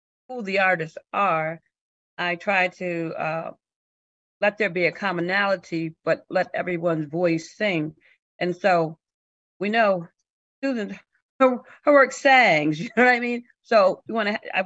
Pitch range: 170-215 Hz